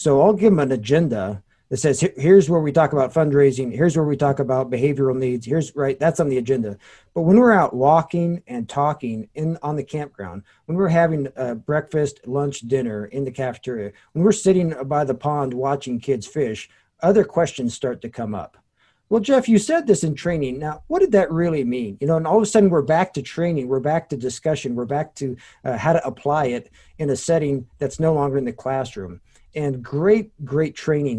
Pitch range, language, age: 125-155 Hz, English, 50-69